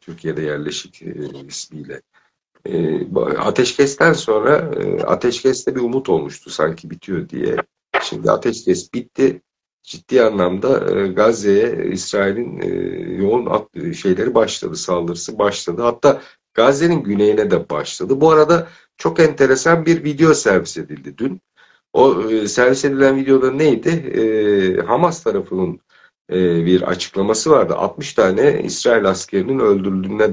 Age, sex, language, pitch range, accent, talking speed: 60-79, male, Turkish, 100-155 Hz, native, 115 wpm